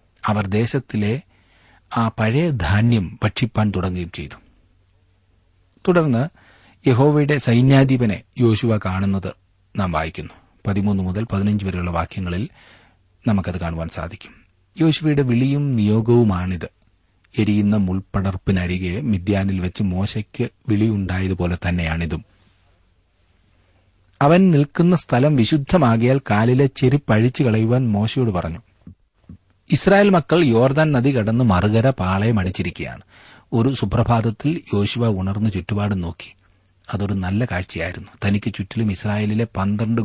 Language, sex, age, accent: Malayalam, male, 40-59, native